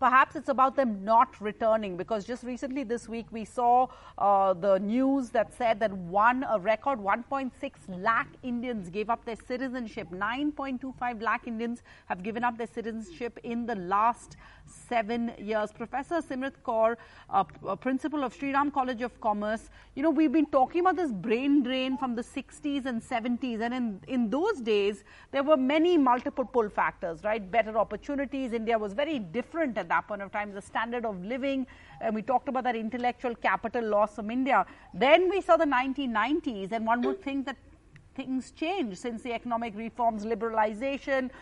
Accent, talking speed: Indian, 175 wpm